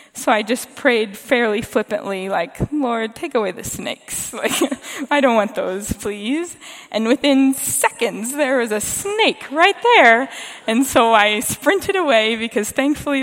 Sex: female